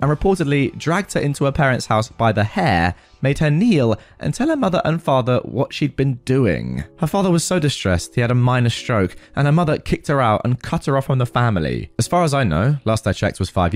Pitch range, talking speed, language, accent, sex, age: 95-155 Hz, 250 wpm, English, British, male, 20-39